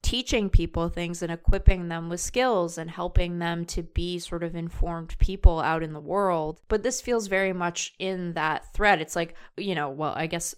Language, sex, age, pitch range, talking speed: English, female, 20-39, 170-210 Hz, 205 wpm